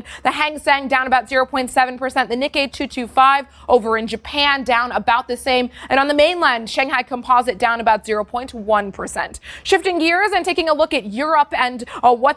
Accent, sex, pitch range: American, female, 240-290 Hz